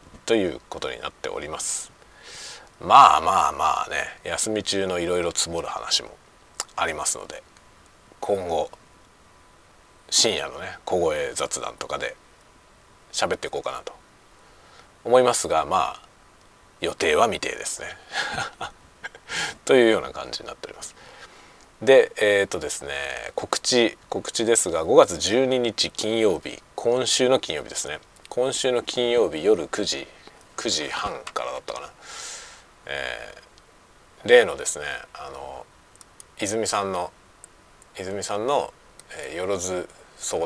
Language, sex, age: Japanese, male, 40-59